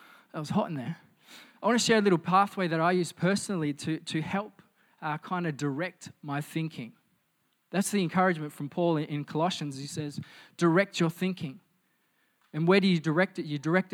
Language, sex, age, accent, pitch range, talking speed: English, male, 20-39, Australian, 160-195 Hz, 195 wpm